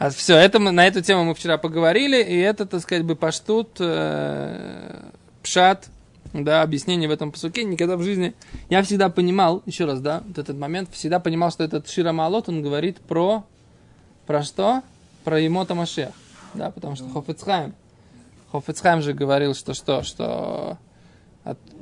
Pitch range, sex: 150-185 Hz, male